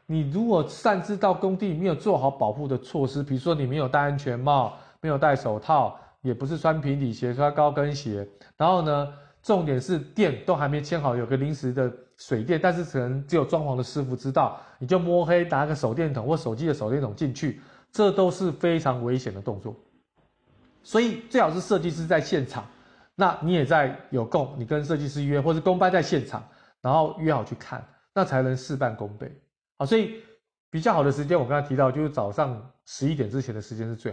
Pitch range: 130-180 Hz